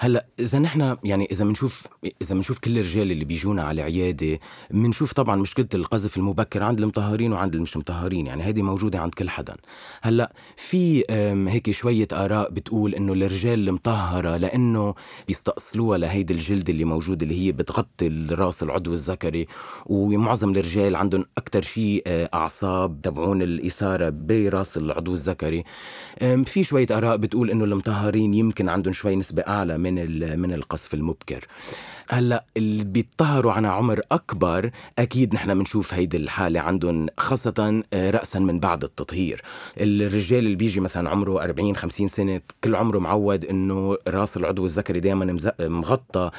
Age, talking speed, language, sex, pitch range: 30-49, 145 wpm, Arabic, male, 90-110 Hz